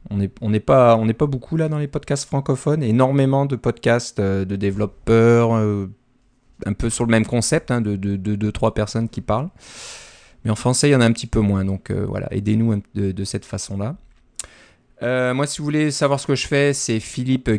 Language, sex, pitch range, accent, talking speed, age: French, male, 105-130 Hz, French, 210 wpm, 30-49